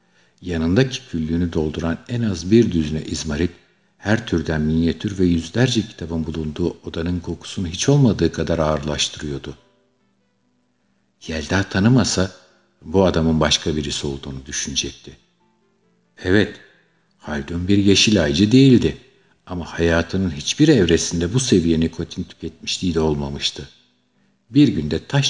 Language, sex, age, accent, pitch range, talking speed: Turkish, male, 50-69, native, 80-105 Hz, 115 wpm